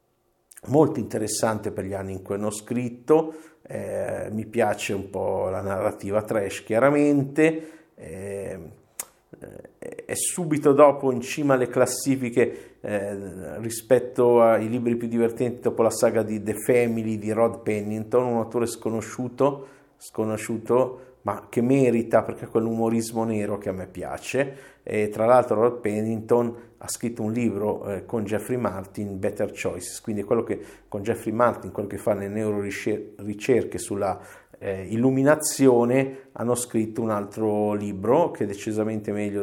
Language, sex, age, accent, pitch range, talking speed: Italian, male, 50-69, native, 105-135 Hz, 145 wpm